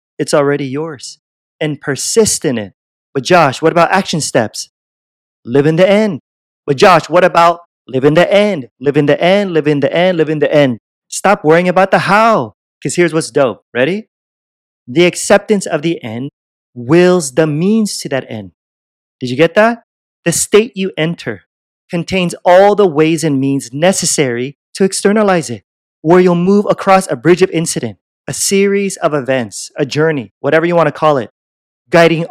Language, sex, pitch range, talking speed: English, male, 135-180 Hz, 180 wpm